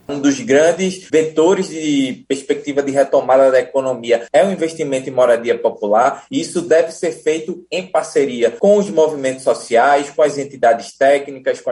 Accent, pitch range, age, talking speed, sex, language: Brazilian, 130-165 Hz, 20-39, 165 wpm, male, Portuguese